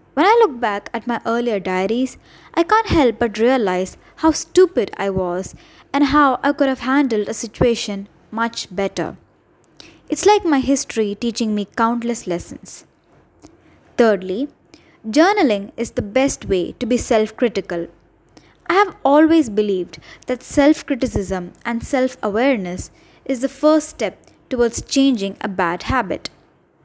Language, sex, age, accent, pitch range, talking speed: English, female, 10-29, Indian, 205-280 Hz, 135 wpm